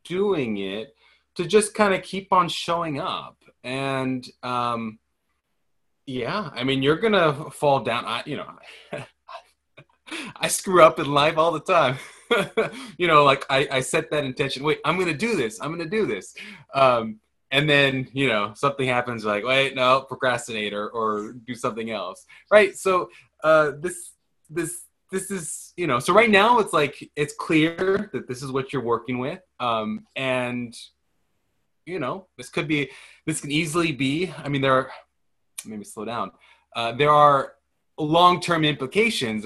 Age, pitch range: 20-39, 120-170 Hz